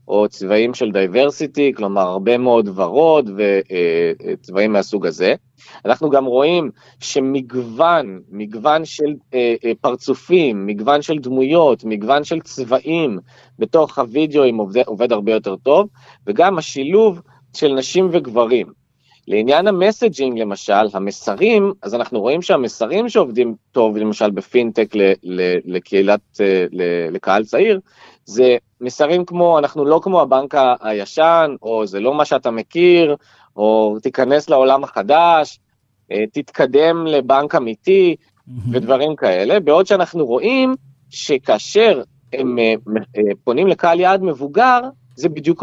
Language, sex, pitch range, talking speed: Hebrew, male, 110-160 Hz, 120 wpm